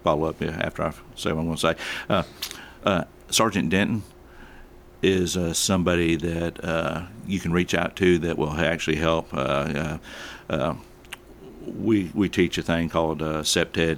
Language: English